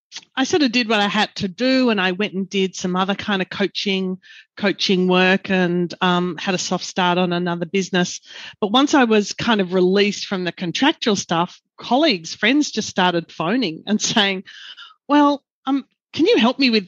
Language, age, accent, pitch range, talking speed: English, 40-59, Australian, 190-240 Hz, 195 wpm